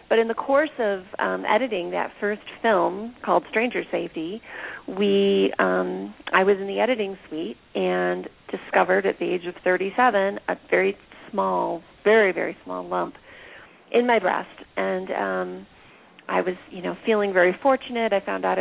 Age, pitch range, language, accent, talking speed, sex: 40-59, 160-200 Hz, English, American, 160 wpm, female